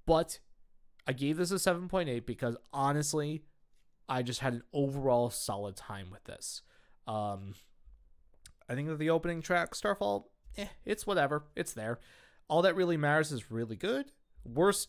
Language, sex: English, male